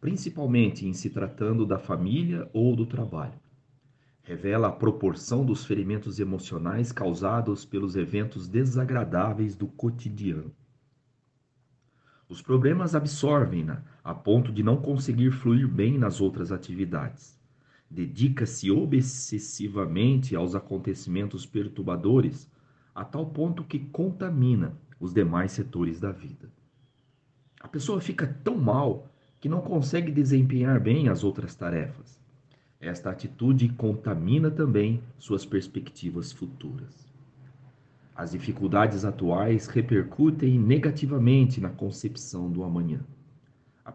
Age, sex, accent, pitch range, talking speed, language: 40-59, male, Brazilian, 105-140 Hz, 110 wpm, Portuguese